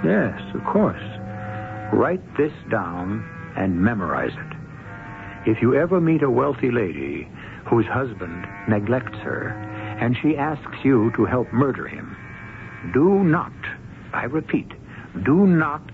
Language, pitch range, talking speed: English, 105-145 Hz, 130 wpm